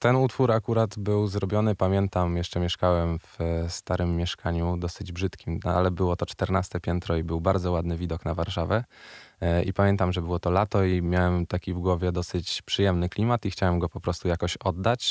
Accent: native